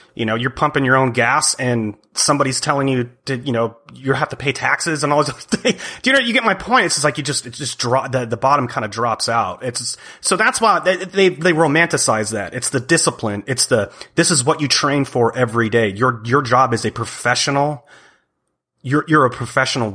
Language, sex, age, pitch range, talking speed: English, male, 30-49, 115-140 Hz, 230 wpm